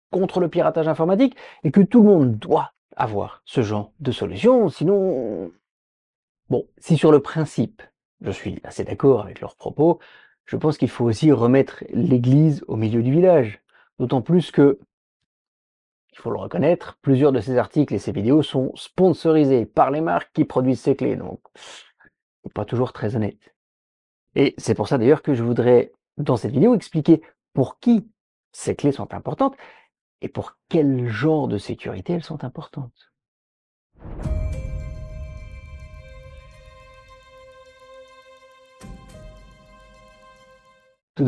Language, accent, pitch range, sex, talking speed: French, French, 110-160 Hz, male, 140 wpm